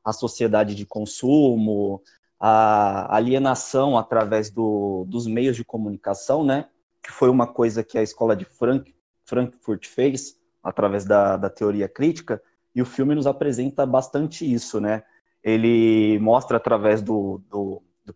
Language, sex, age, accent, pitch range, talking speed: Portuguese, male, 20-39, Brazilian, 105-130 Hz, 135 wpm